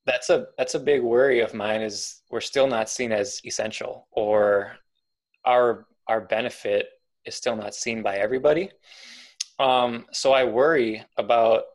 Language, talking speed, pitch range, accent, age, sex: English, 155 wpm, 110-135 Hz, American, 20-39, male